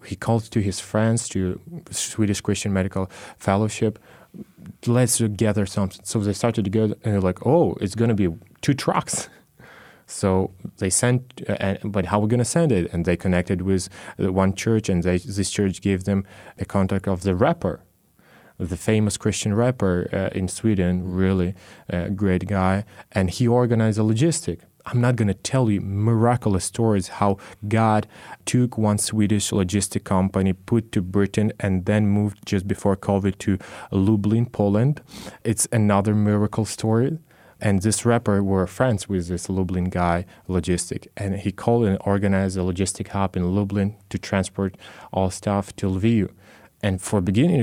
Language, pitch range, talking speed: English, 95-110 Hz, 170 wpm